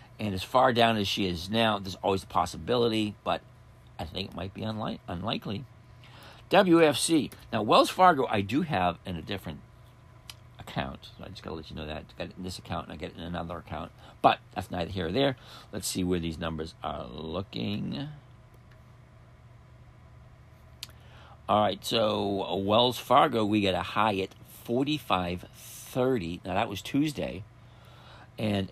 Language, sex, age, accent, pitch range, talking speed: English, male, 50-69, American, 90-125 Hz, 165 wpm